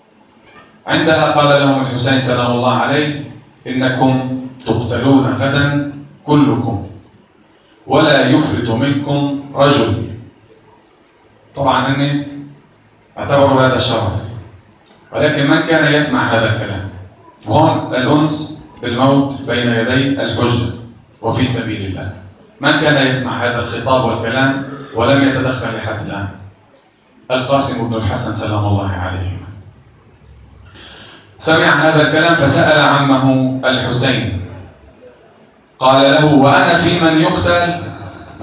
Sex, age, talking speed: male, 40-59, 100 wpm